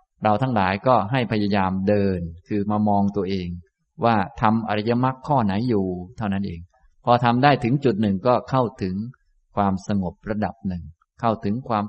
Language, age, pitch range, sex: Thai, 20-39, 95-120 Hz, male